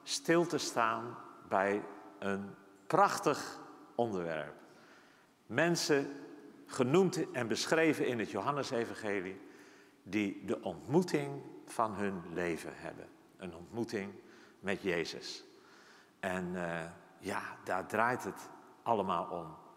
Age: 50-69